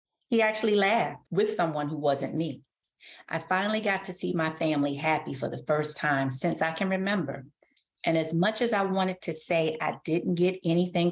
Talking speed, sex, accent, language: 195 wpm, female, American, English